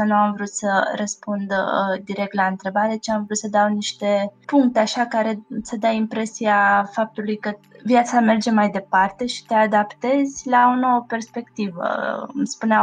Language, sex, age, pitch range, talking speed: Romanian, female, 20-39, 195-220 Hz, 160 wpm